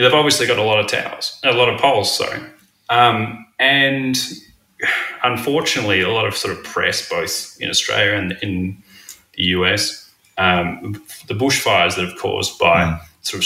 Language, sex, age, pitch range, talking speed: English, male, 20-39, 95-110 Hz, 165 wpm